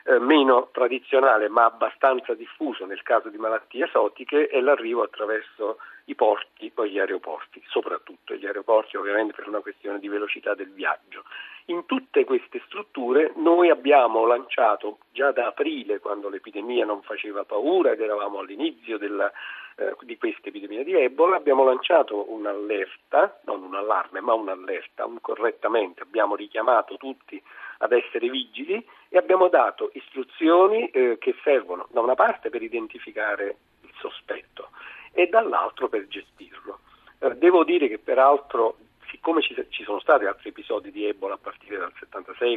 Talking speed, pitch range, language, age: 145 wpm, 260-420 Hz, Italian, 50-69